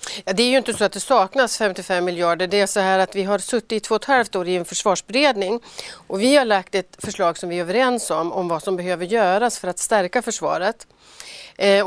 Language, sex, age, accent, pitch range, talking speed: Swedish, female, 40-59, native, 185-235 Hz, 250 wpm